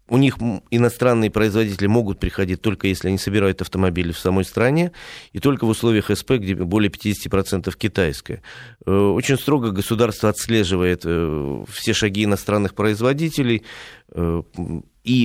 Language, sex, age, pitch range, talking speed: Russian, male, 30-49, 95-115 Hz, 125 wpm